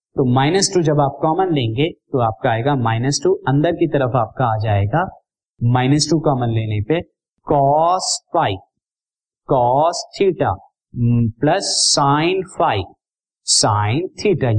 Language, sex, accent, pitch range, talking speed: Hindi, male, native, 120-165 Hz, 130 wpm